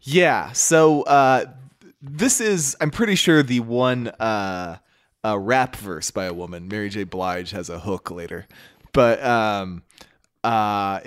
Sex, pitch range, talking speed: male, 100-130 Hz, 145 wpm